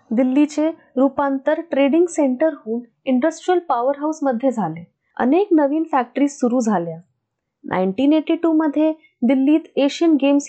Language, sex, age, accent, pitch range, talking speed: Marathi, female, 20-39, native, 225-315 Hz, 110 wpm